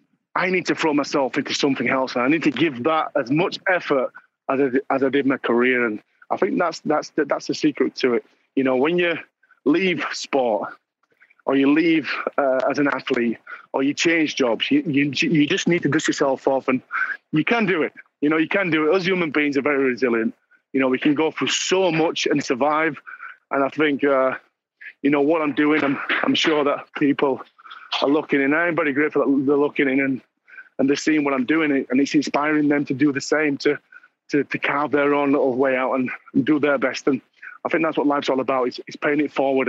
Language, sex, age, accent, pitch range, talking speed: English, male, 30-49, British, 130-160 Hz, 235 wpm